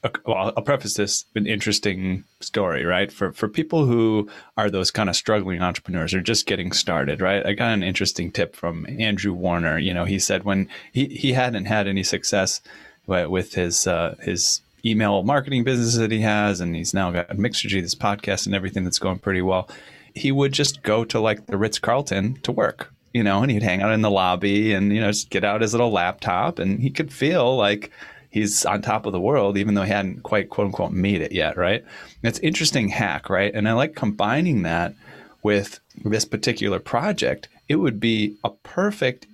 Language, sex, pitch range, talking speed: English, male, 95-115 Hz, 210 wpm